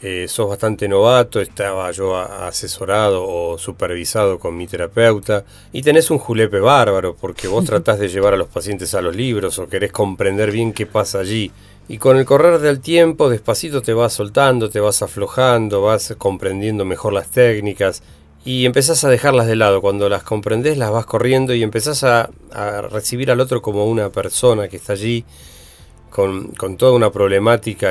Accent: Argentinian